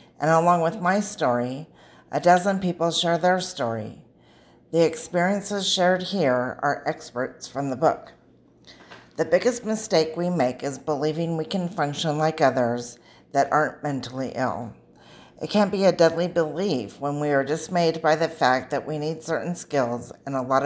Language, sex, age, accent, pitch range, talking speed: English, female, 50-69, American, 130-170 Hz, 165 wpm